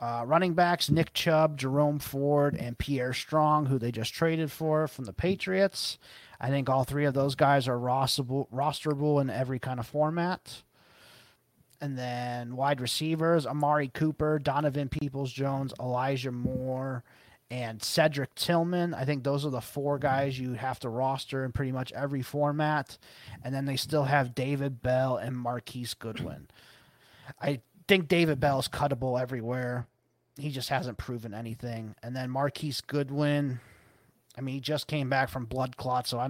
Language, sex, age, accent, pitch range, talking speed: English, male, 30-49, American, 120-145 Hz, 165 wpm